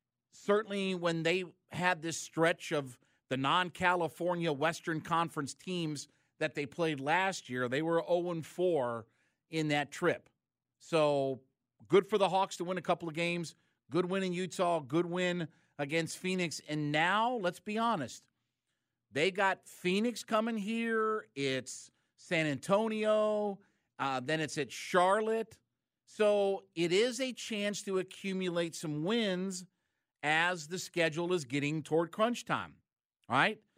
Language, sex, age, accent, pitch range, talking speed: English, male, 50-69, American, 155-205 Hz, 140 wpm